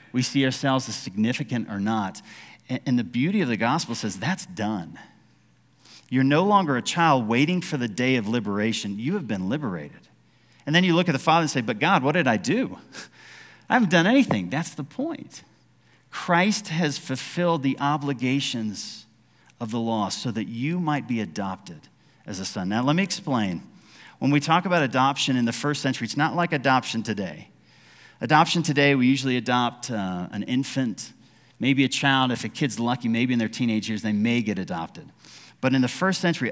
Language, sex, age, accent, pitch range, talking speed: English, male, 40-59, American, 115-150 Hz, 190 wpm